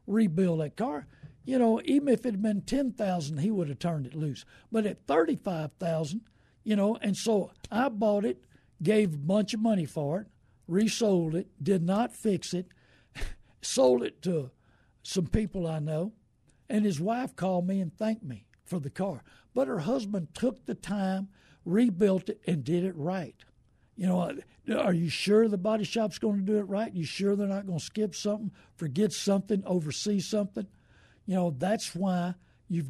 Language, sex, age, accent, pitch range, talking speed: English, male, 60-79, American, 165-215 Hz, 190 wpm